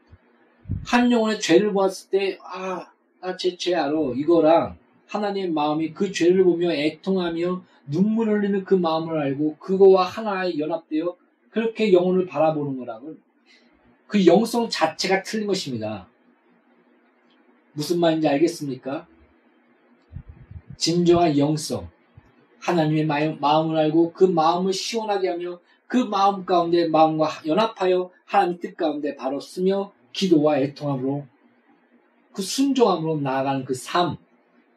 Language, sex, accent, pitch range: Korean, male, native, 155-200 Hz